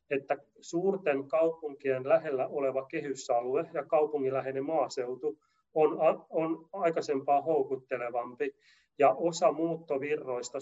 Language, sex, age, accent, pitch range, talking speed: Finnish, male, 30-49, native, 130-155 Hz, 90 wpm